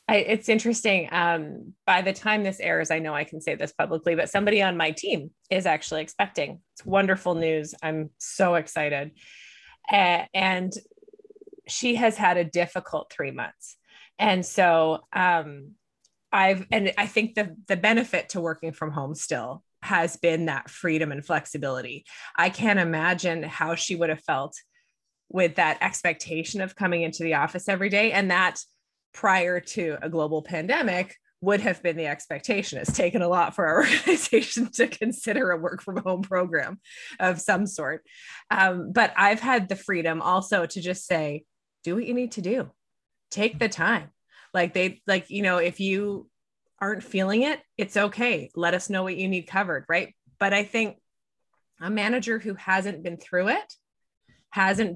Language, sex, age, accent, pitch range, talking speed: English, female, 20-39, American, 170-210 Hz, 170 wpm